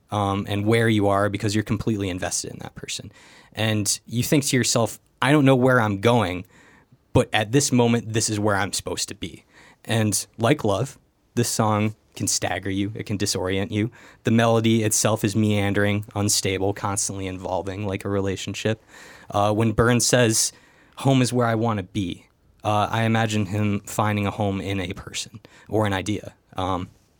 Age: 20-39